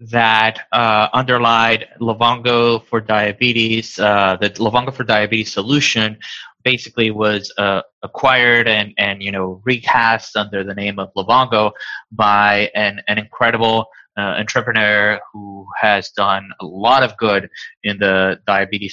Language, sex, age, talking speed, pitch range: English, male, 20-39, 135 wpm, 105-125 Hz